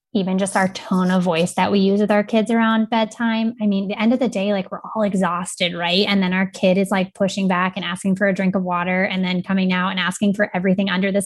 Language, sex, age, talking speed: English, female, 20-39, 270 wpm